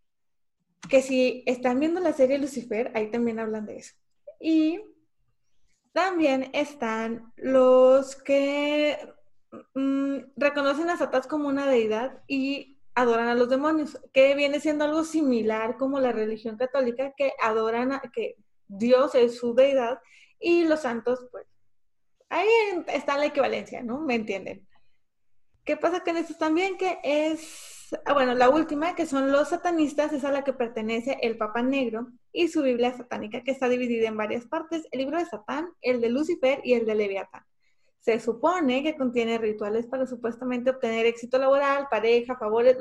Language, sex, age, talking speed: Spanish, female, 20-39, 155 wpm